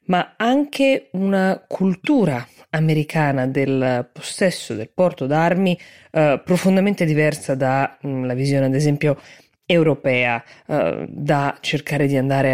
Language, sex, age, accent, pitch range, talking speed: Italian, female, 20-39, native, 145-190 Hz, 110 wpm